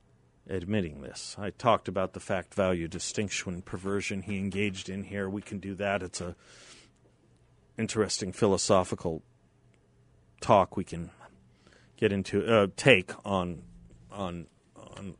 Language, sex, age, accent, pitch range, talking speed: English, male, 40-59, American, 90-115 Hz, 130 wpm